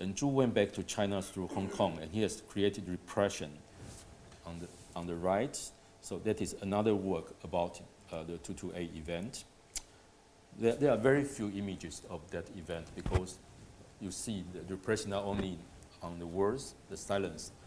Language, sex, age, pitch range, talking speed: English, male, 50-69, 85-105 Hz, 170 wpm